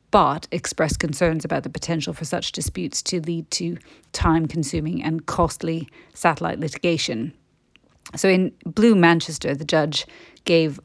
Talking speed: 135 wpm